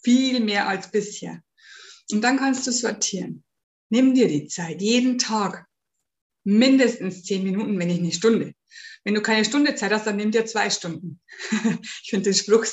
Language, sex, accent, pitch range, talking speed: German, female, German, 195-250 Hz, 175 wpm